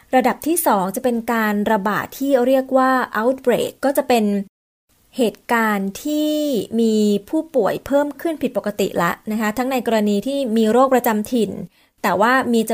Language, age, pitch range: Thai, 20-39, 200-255 Hz